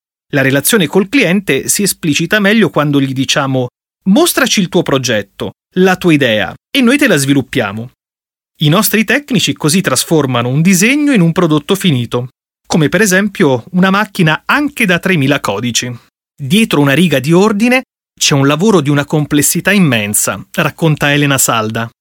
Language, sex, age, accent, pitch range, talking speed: Italian, male, 30-49, native, 130-185 Hz, 155 wpm